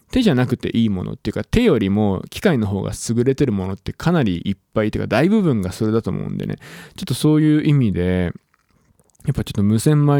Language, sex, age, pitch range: Japanese, male, 20-39, 105-155 Hz